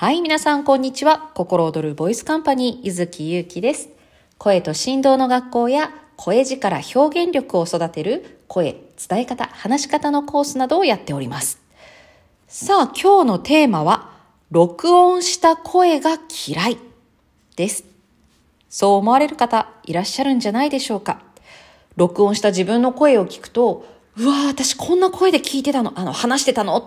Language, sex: Japanese, female